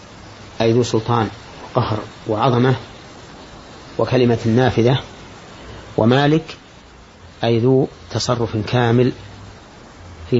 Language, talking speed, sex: Arabic, 75 wpm, male